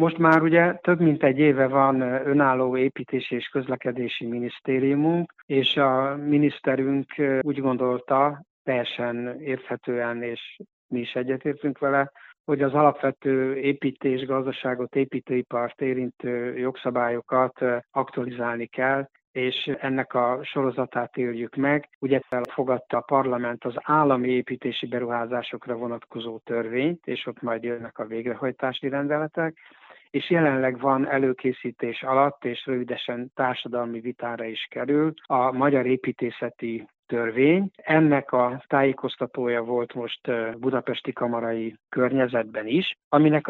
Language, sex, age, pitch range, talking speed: Hungarian, male, 60-79, 120-140 Hz, 115 wpm